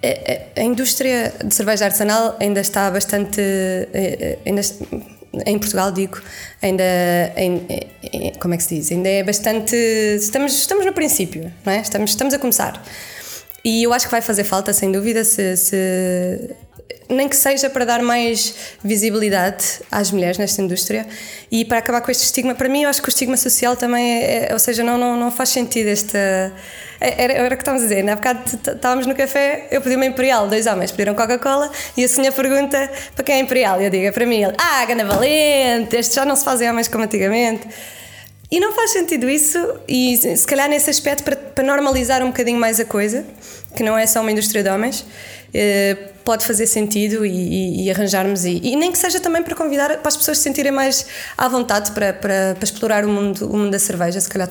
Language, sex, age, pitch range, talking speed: Portuguese, female, 20-39, 195-260 Hz, 200 wpm